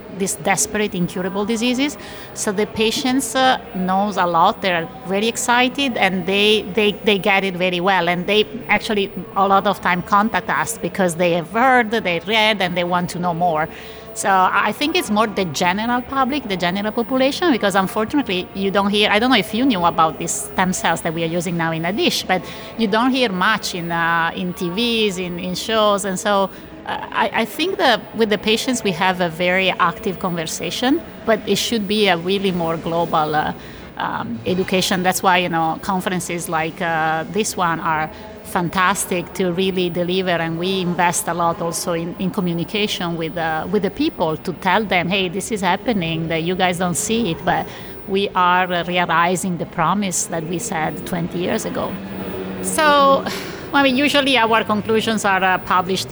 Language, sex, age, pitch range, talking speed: English, female, 30-49, 175-215 Hz, 190 wpm